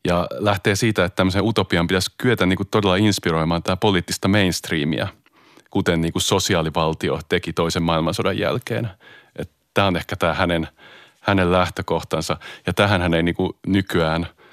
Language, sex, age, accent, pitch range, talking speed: Finnish, male, 30-49, native, 85-100 Hz, 135 wpm